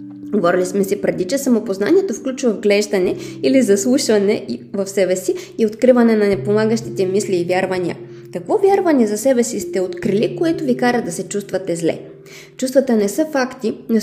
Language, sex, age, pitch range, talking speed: Bulgarian, female, 20-39, 180-230 Hz, 165 wpm